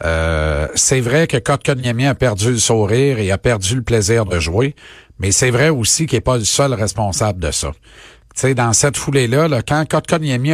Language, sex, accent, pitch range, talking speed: French, male, Canadian, 105-140 Hz, 215 wpm